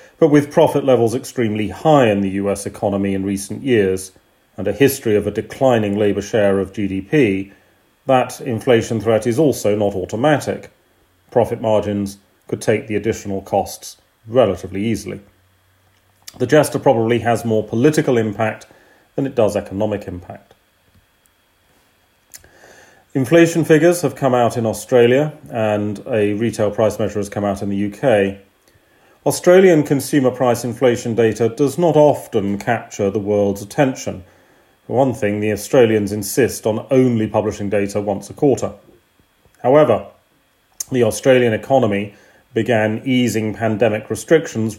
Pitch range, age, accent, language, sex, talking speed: 100-130 Hz, 40-59, British, English, male, 135 wpm